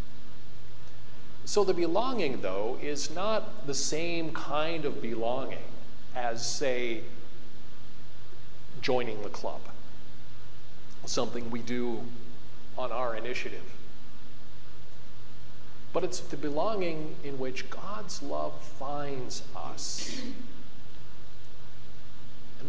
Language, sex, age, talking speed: English, male, 50-69, 85 wpm